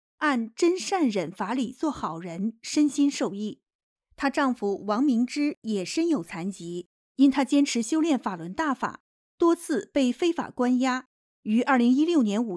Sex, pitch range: female, 220-285 Hz